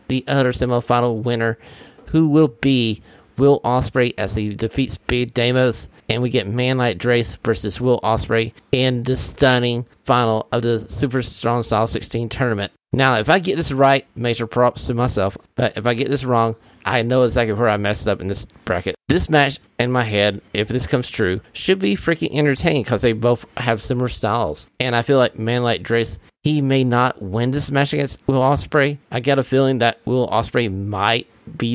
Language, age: English, 30-49